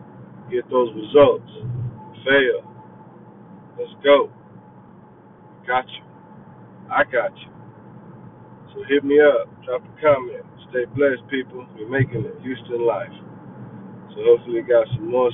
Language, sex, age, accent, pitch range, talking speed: English, male, 50-69, American, 125-145 Hz, 130 wpm